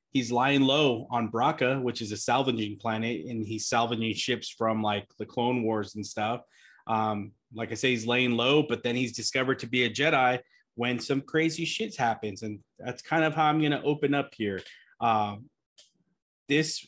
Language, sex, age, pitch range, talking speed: English, male, 20-39, 110-130 Hz, 190 wpm